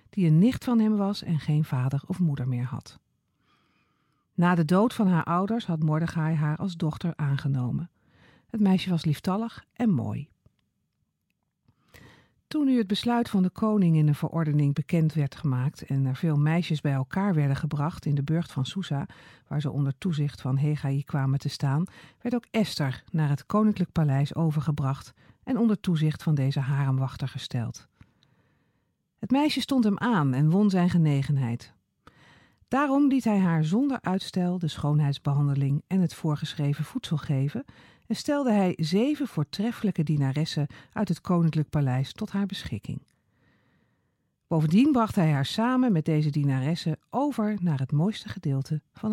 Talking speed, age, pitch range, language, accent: 160 wpm, 50-69, 140-200 Hz, Dutch, Dutch